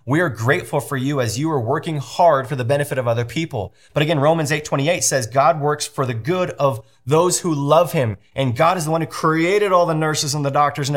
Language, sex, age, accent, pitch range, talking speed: English, male, 30-49, American, 130-170 Hz, 255 wpm